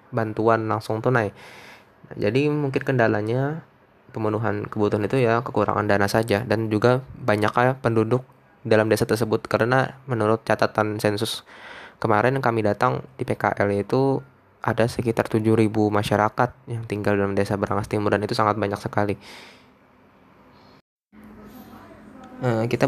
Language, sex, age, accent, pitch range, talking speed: Indonesian, male, 20-39, native, 110-130 Hz, 125 wpm